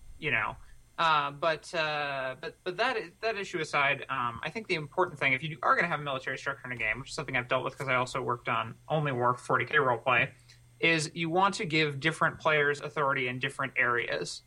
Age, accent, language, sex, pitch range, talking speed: 30-49, American, English, male, 125-155 Hz, 230 wpm